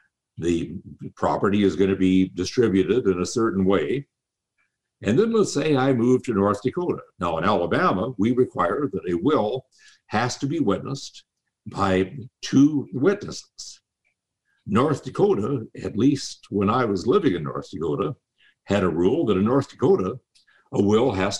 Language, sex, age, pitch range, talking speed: English, male, 60-79, 95-145 Hz, 155 wpm